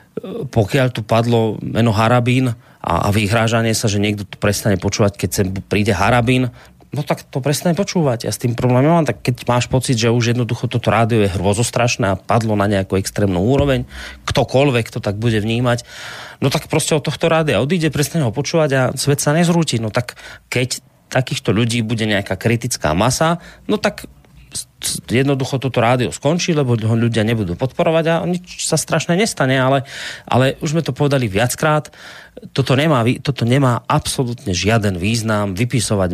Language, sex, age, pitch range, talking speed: Slovak, male, 30-49, 110-145 Hz, 170 wpm